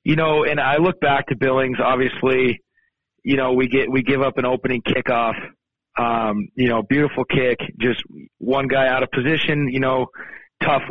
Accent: American